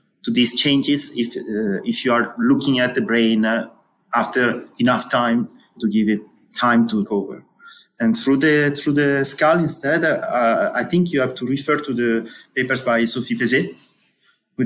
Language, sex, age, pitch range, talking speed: English, male, 30-49, 120-150 Hz, 175 wpm